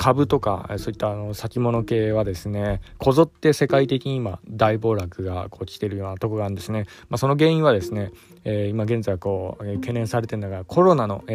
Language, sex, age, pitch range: Japanese, male, 20-39, 100-135 Hz